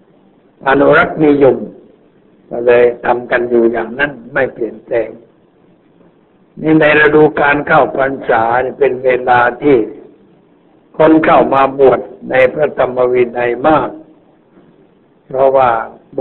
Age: 60-79